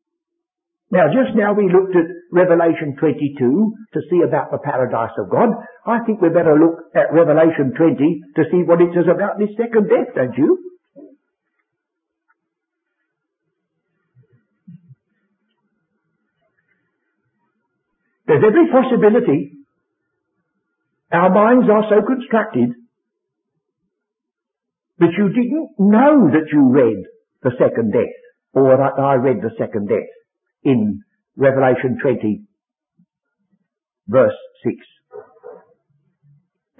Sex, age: male, 60-79